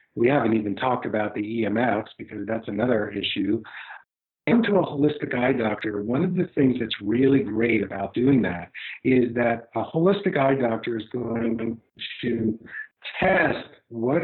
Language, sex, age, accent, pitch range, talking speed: English, male, 50-69, American, 115-145 Hz, 160 wpm